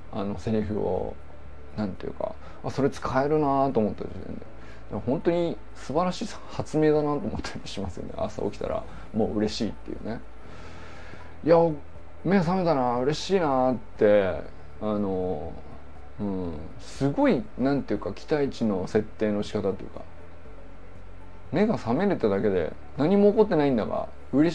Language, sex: Japanese, male